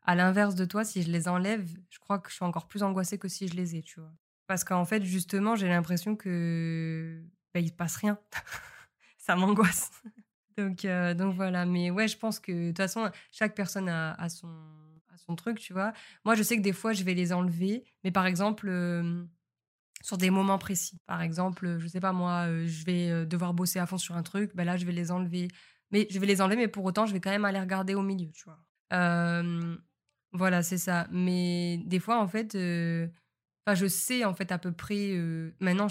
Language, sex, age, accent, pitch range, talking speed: French, female, 20-39, French, 175-200 Hz, 230 wpm